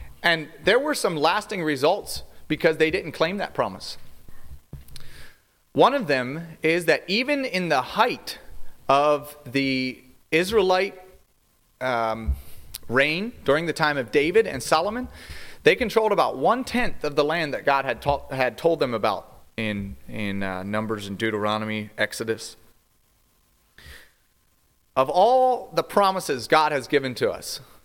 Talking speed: 140 wpm